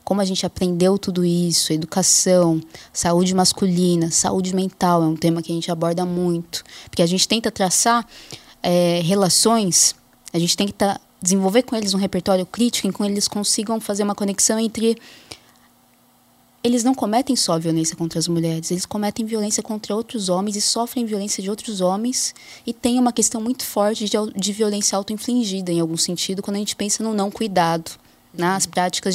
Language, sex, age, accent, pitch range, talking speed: English, female, 20-39, Brazilian, 180-225 Hz, 175 wpm